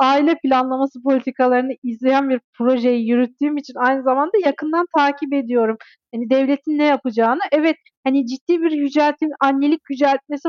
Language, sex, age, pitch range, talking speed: Turkish, female, 40-59, 270-335 Hz, 135 wpm